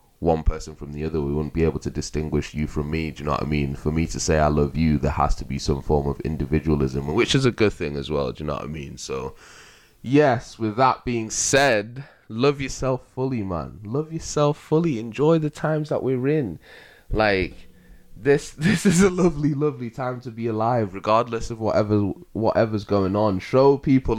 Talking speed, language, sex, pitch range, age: 215 wpm, English, male, 105-145 Hz, 20-39